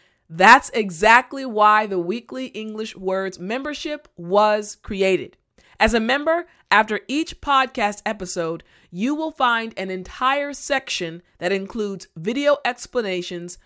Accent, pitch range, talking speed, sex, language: American, 180-255 Hz, 120 wpm, female, English